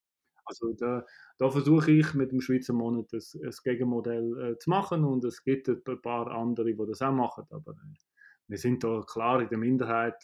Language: English